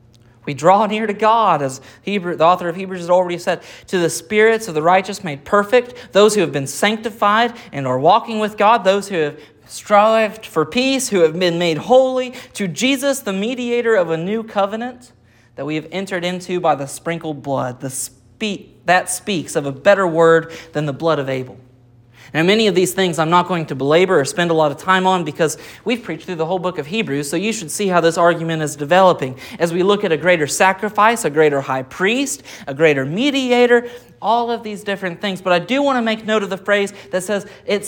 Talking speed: 220 wpm